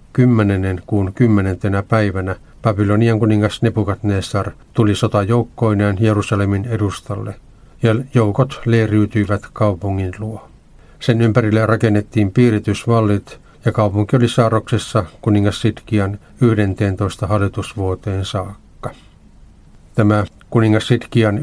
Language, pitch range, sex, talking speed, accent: Finnish, 100-115 Hz, male, 90 wpm, native